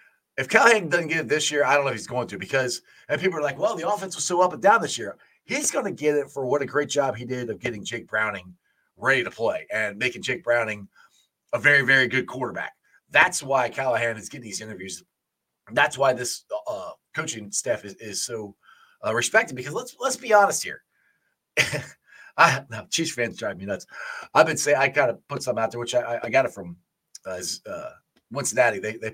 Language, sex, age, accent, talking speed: English, male, 30-49, American, 225 wpm